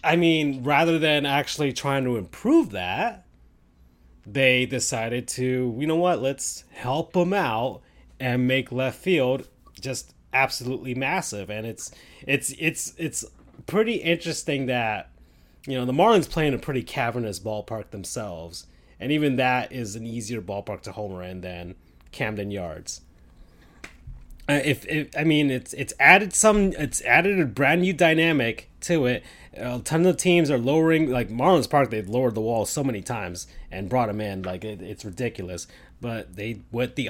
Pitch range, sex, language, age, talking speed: 100-145 Hz, male, English, 30-49, 170 wpm